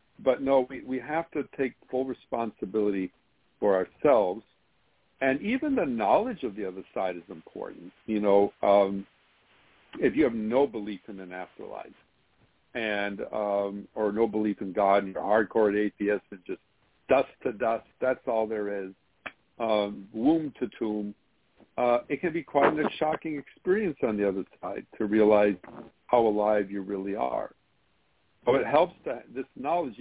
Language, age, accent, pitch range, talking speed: English, 60-79, American, 105-135 Hz, 165 wpm